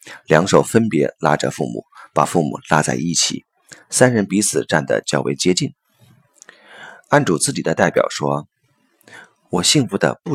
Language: Chinese